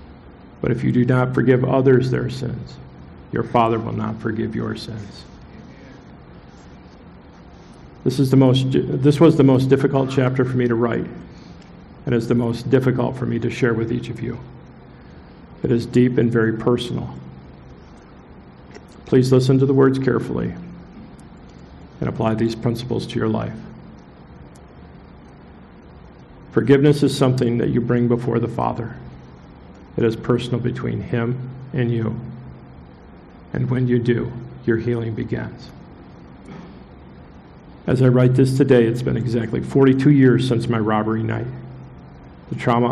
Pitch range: 110-125 Hz